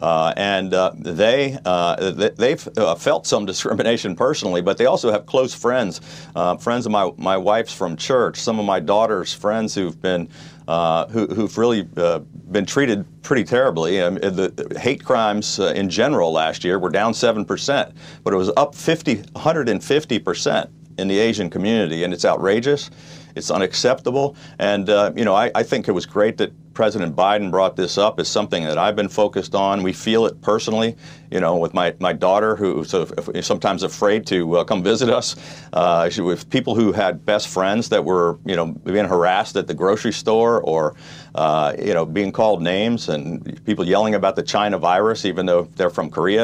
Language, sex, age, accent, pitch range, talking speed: English, male, 40-59, American, 95-115 Hz, 195 wpm